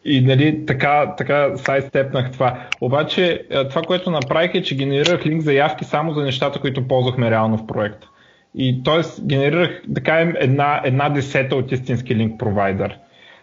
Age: 20-39